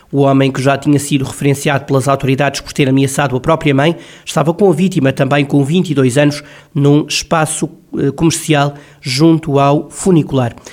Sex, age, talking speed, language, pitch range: male, 20-39, 160 wpm, Portuguese, 135-155 Hz